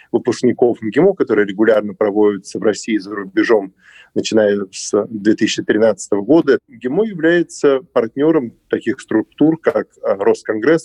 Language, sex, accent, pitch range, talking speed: Russian, male, native, 110-160 Hz, 110 wpm